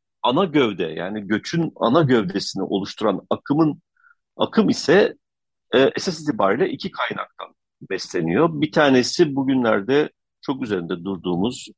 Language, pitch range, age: Turkish, 95-150 Hz, 50-69